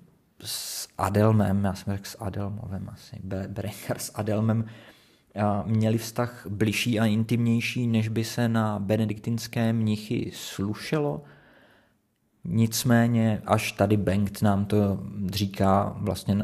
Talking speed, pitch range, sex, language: 115 wpm, 100-110 Hz, male, Czech